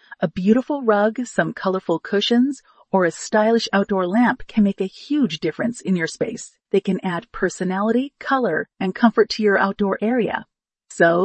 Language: English